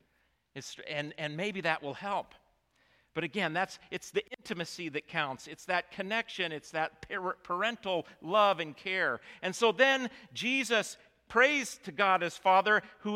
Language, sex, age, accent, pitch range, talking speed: English, male, 50-69, American, 160-230 Hz, 150 wpm